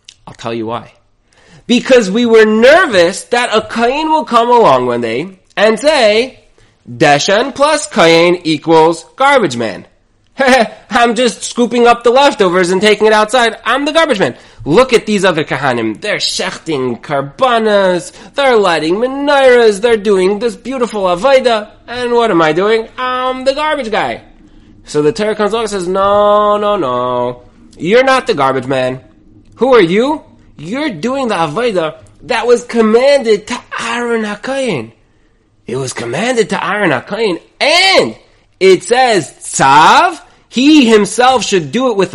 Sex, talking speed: male, 150 wpm